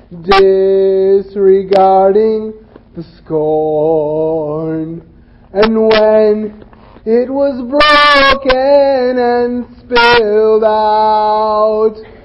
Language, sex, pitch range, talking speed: English, male, 220-305 Hz, 55 wpm